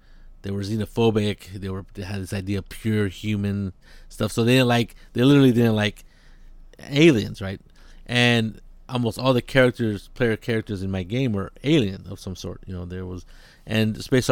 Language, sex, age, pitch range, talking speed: English, male, 30-49, 95-115 Hz, 190 wpm